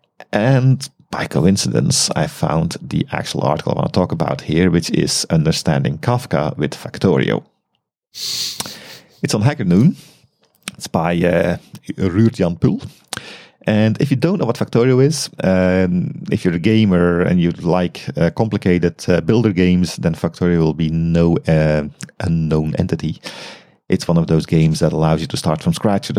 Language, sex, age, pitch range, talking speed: English, male, 40-59, 85-115 Hz, 165 wpm